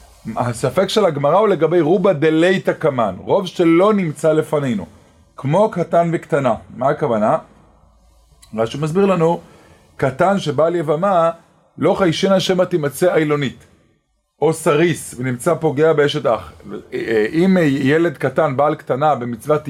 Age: 30-49